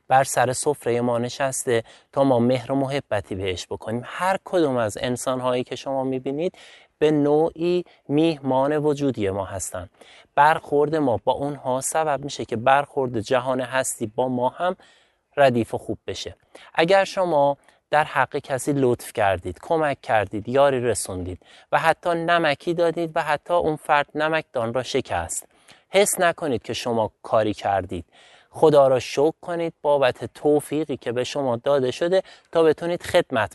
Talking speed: 150 wpm